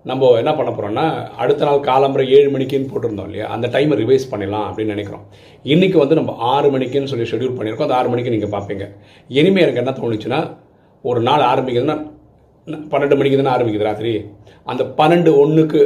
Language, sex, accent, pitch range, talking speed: Tamil, male, native, 105-140 Hz, 170 wpm